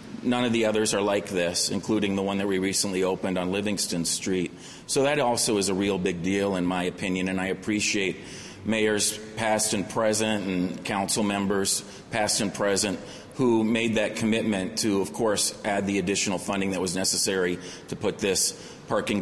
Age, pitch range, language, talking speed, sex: 40-59, 95-110 Hz, English, 185 wpm, male